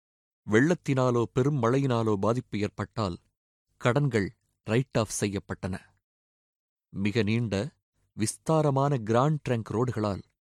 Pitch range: 100-125 Hz